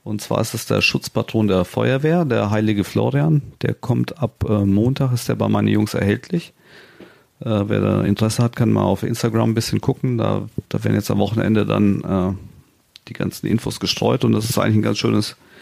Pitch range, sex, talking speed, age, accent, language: 100-120 Hz, male, 205 wpm, 40-59, German, German